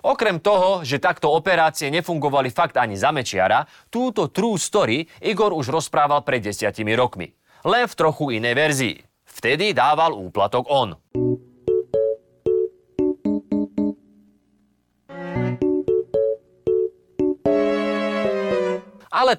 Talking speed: 90 wpm